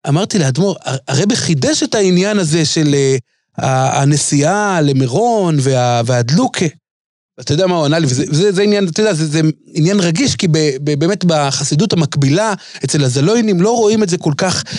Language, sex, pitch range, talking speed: Hebrew, male, 145-200 Hz, 145 wpm